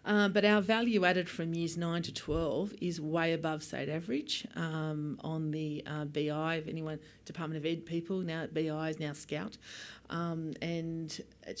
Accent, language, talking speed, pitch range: Australian, English, 175 wpm, 160-210 Hz